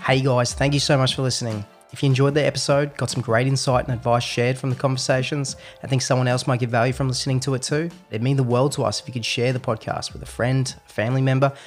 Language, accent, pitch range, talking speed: English, Australian, 115-135 Hz, 275 wpm